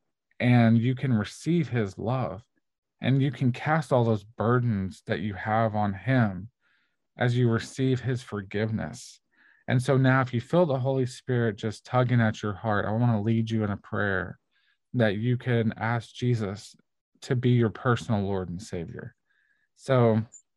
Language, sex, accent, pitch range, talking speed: English, male, American, 105-125 Hz, 170 wpm